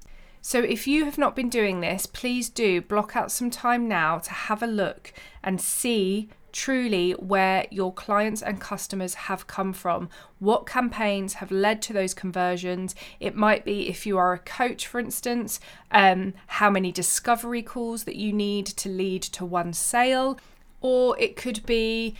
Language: English